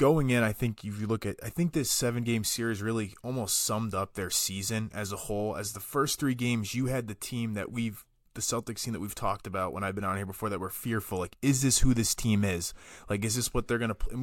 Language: English